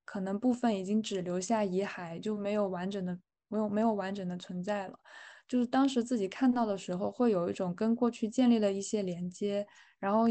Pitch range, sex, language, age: 195-245 Hz, female, Chinese, 10-29